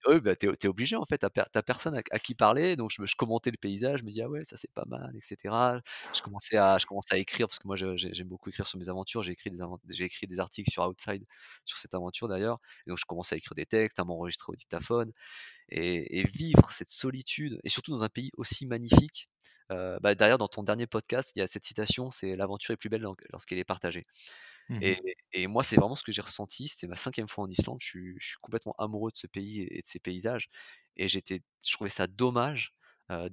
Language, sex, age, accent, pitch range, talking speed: French, male, 30-49, French, 95-115 Hz, 250 wpm